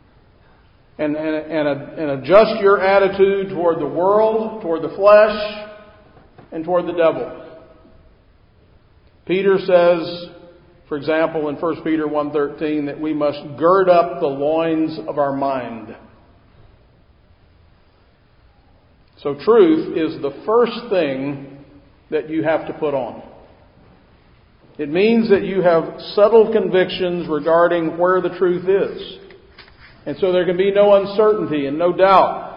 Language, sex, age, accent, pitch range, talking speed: English, male, 50-69, American, 145-190 Hz, 125 wpm